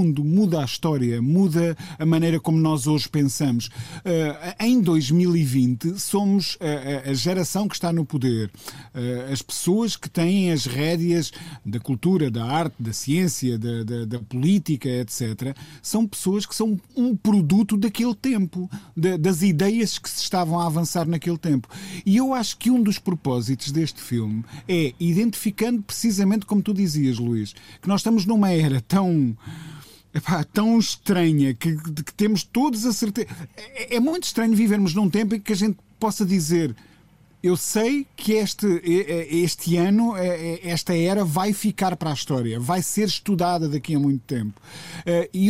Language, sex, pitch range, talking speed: Portuguese, male, 150-205 Hz, 155 wpm